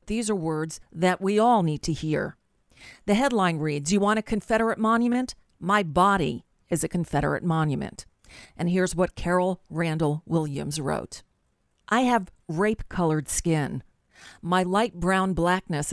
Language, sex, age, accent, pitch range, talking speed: English, female, 40-59, American, 170-210 Hz, 145 wpm